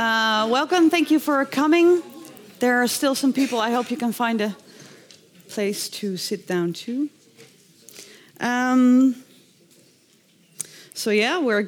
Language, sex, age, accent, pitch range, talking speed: Dutch, female, 30-49, Dutch, 195-255 Hz, 135 wpm